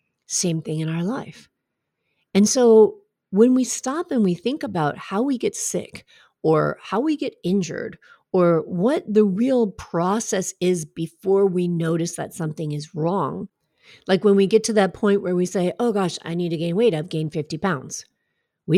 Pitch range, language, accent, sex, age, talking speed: 175-240 Hz, English, American, female, 40-59, 185 wpm